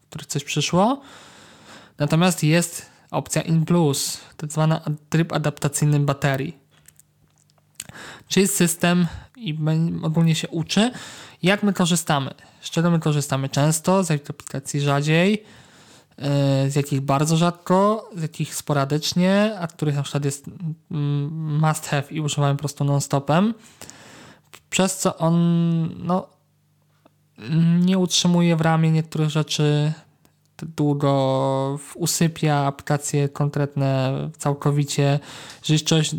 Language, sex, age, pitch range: Polish, male, 20-39, 145-160 Hz